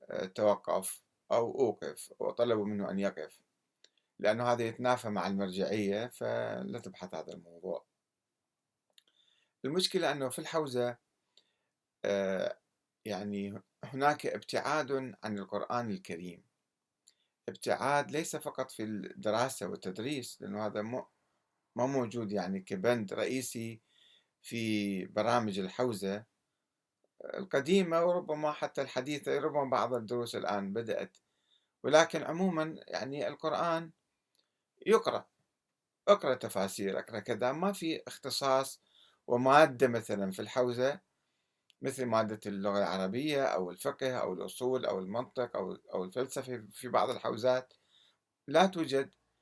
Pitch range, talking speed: 105-145 Hz, 100 wpm